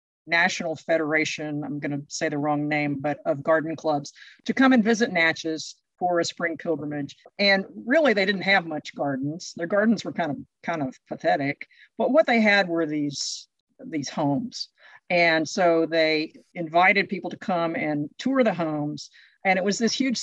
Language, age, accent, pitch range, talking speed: English, 50-69, American, 155-195 Hz, 180 wpm